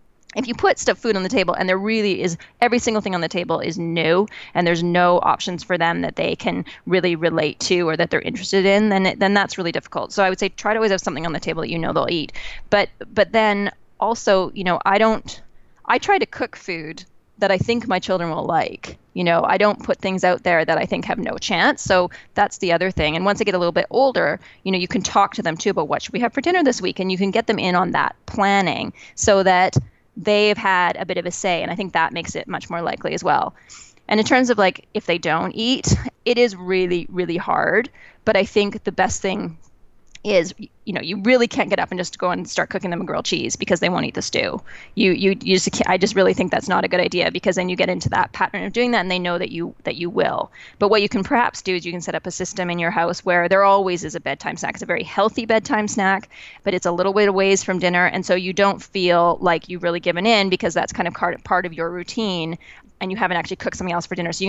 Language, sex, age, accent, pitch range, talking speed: English, female, 20-39, American, 175-205 Hz, 275 wpm